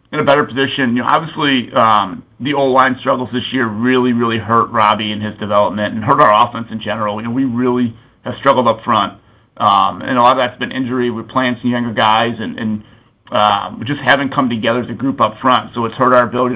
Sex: male